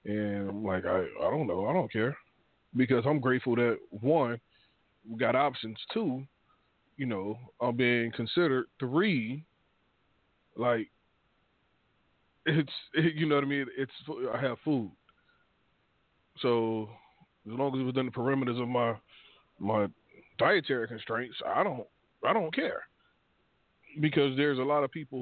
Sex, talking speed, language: male, 145 wpm, English